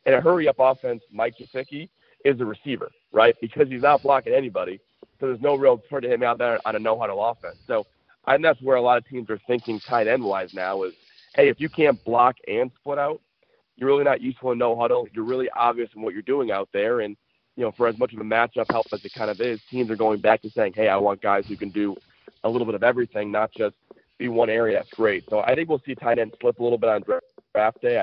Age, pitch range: 40-59, 110-130 Hz